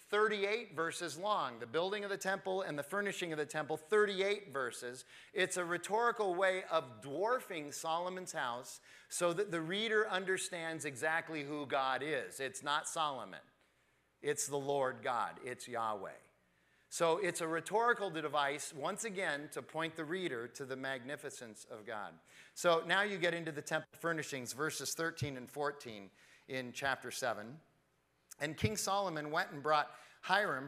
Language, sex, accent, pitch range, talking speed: English, male, American, 140-180 Hz, 155 wpm